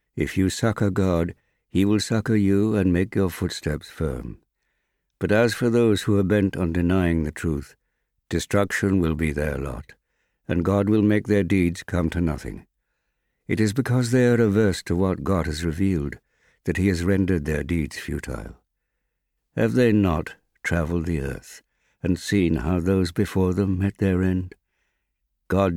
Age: 60-79